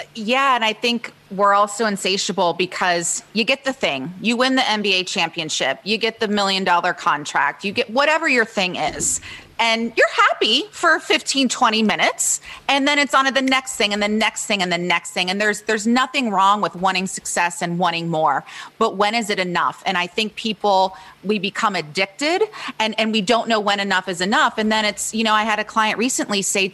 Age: 30-49